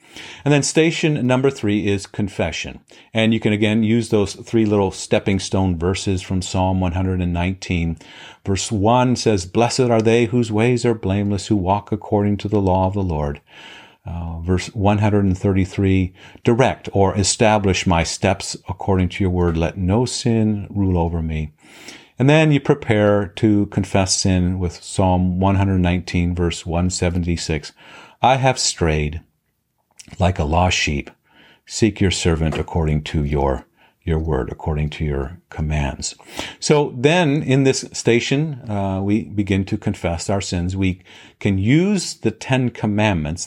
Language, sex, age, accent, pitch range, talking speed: English, male, 50-69, American, 85-110 Hz, 150 wpm